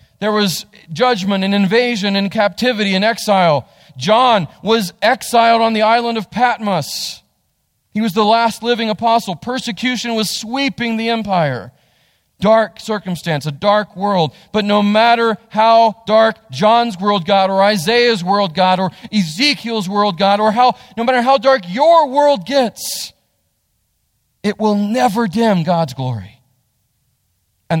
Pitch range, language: 155-220 Hz, English